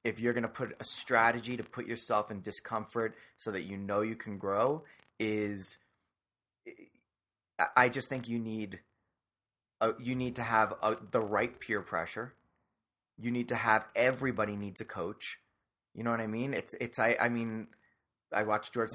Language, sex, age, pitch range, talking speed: English, male, 30-49, 105-125 Hz, 185 wpm